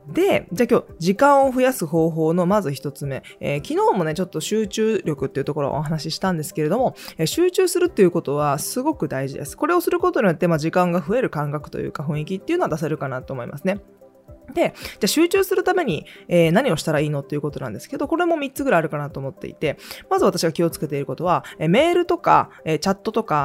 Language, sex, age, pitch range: Japanese, female, 20-39, 150-230 Hz